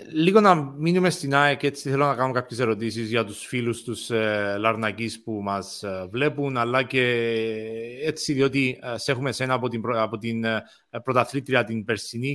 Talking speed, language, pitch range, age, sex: 160 wpm, Greek, 120-150 Hz, 30-49, male